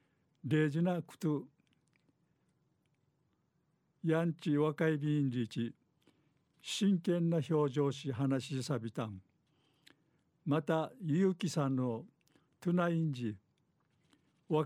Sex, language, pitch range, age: male, Japanese, 140-165 Hz, 60-79